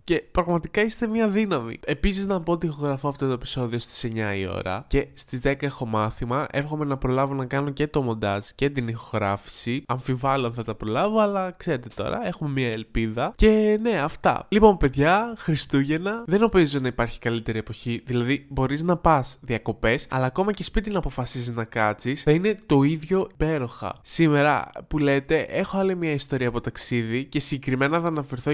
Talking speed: 185 wpm